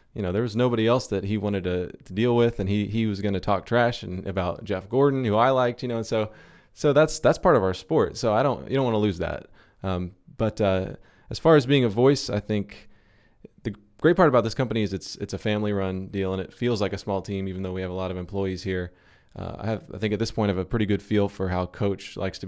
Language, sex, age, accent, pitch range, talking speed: English, male, 20-39, American, 95-115 Hz, 285 wpm